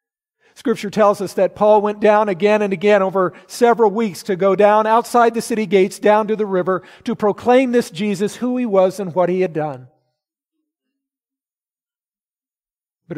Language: English